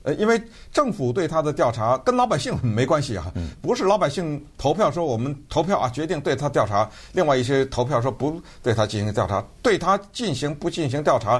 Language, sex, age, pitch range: Chinese, male, 50-69, 110-155 Hz